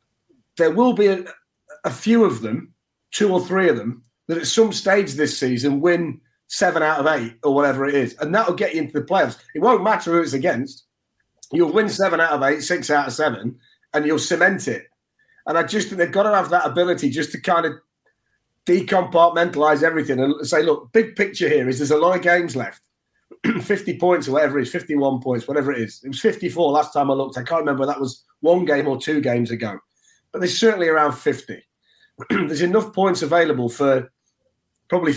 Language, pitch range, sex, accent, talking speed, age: English, 135-175 Hz, male, British, 215 wpm, 30-49